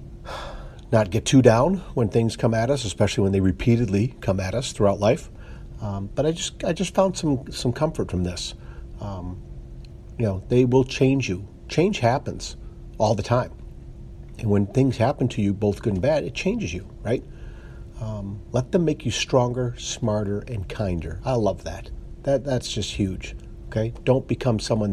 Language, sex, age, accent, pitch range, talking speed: English, male, 50-69, American, 100-125 Hz, 185 wpm